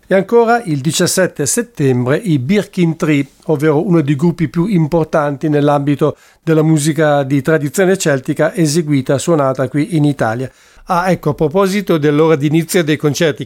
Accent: Italian